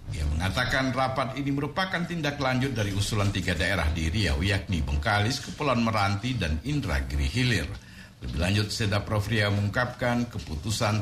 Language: Indonesian